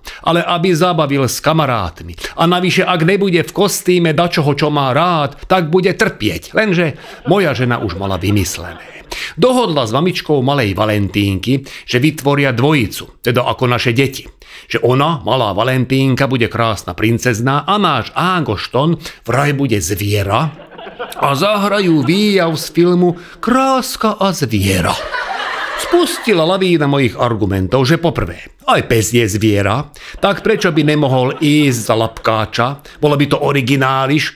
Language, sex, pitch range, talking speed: Slovak, male, 120-175 Hz, 140 wpm